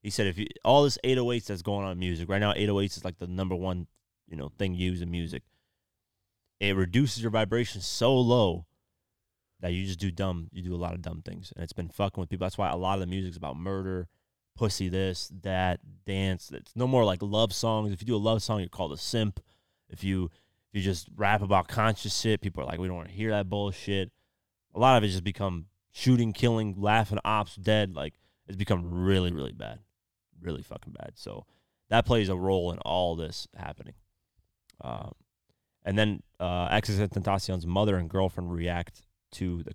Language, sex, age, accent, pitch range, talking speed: English, male, 20-39, American, 90-105 Hz, 210 wpm